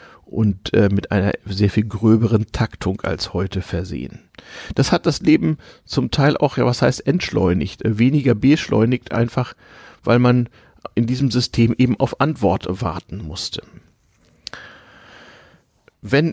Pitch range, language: 95-120 Hz, German